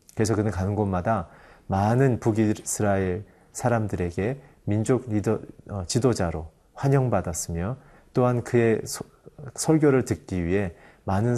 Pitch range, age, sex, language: 100-130 Hz, 30-49, male, Korean